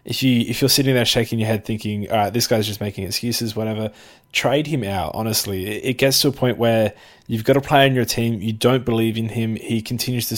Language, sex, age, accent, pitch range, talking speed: English, male, 20-39, Australian, 105-125 Hz, 255 wpm